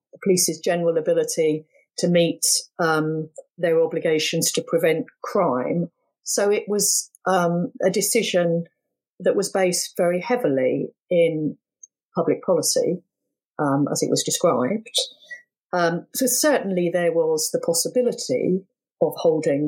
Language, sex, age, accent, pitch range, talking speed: English, female, 50-69, British, 165-205 Hz, 120 wpm